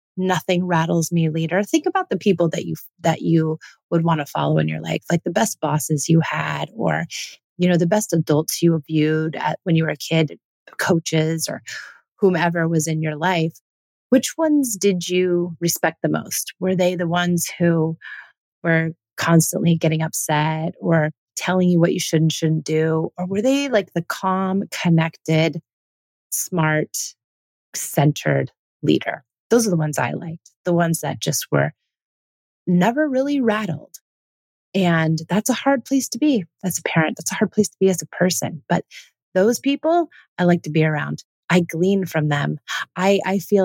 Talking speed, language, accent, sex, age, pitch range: 175 wpm, English, American, female, 30-49, 155-185 Hz